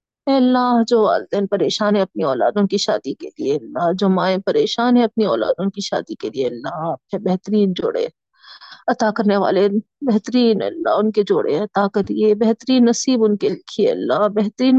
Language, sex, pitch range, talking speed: Urdu, female, 215-255 Hz, 170 wpm